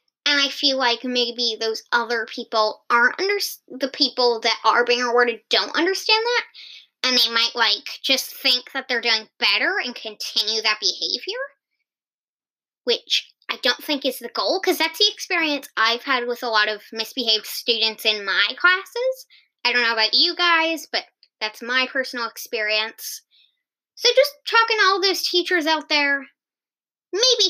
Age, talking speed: 10-29, 165 wpm